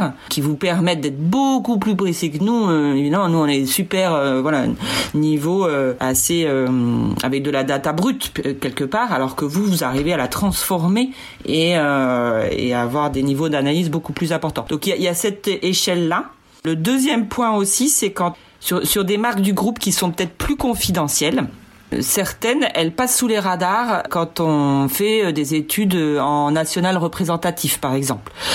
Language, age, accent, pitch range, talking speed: French, 40-59, French, 140-180 Hz, 180 wpm